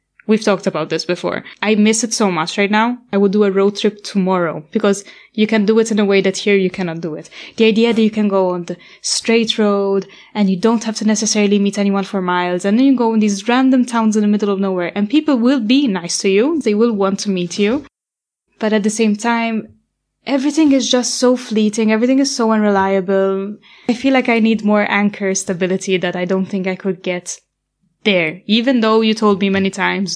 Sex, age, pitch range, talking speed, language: female, 10-29, 180-220 Hz, 230 wpm, English